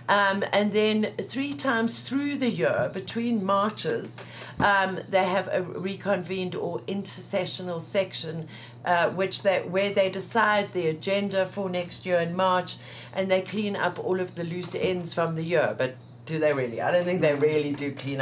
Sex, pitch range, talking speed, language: female, 170-210 Hz, 180 wpm, English